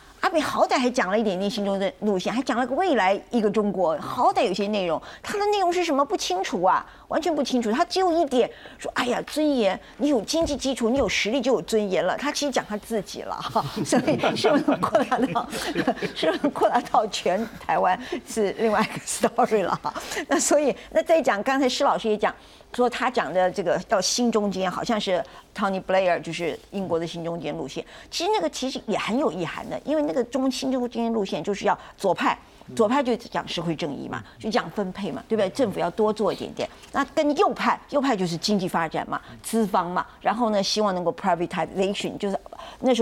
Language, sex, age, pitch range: Chinese, female, 50-69, 190-270 Hz